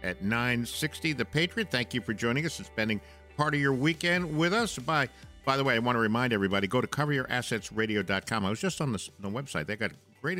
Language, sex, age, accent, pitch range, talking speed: English, male, 60-79, American, 105-150 Hz, 225 wpm